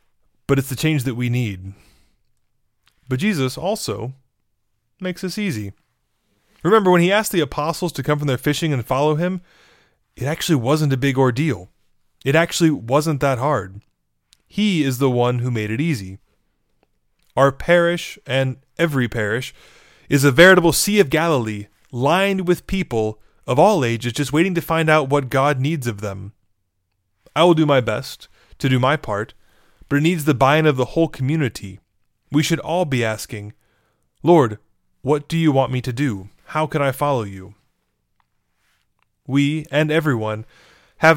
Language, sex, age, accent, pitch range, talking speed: English, male, 20-39, American, 120-160 Hz, 165 wpm